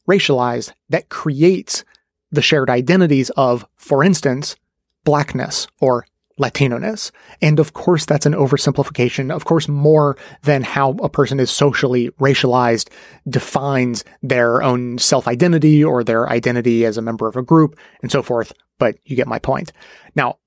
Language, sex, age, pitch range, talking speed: English, male, 30-49, 130-155 Hz, 145 wpm